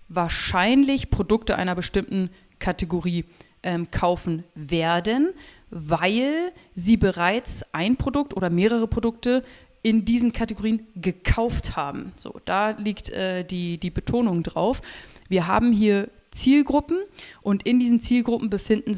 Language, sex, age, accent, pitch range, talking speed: German, female, 30-49, German, 185-230 Hz, 120 wpm